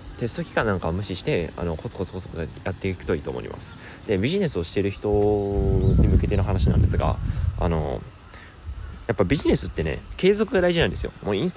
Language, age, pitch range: Japanese, 20-39, 85-110 Hz